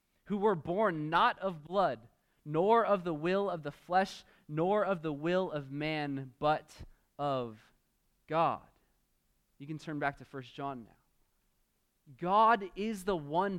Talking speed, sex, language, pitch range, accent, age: 150 wpm, male, English, 140-175 Hz, American, 20-39